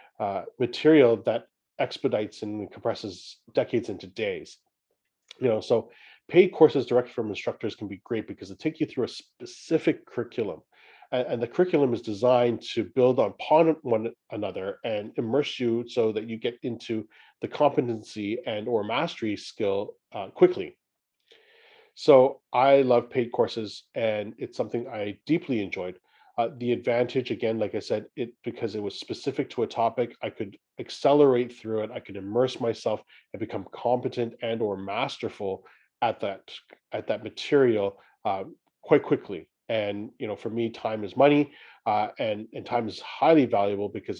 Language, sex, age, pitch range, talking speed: English, male, 40-59, 100-130 Hz, 165 wpm